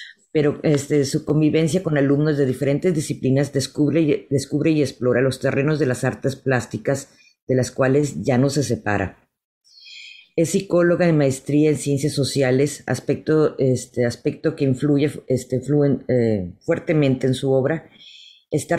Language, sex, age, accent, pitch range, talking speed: English, female, 40-59, Mexican, 130-150 Hz, 135 wpm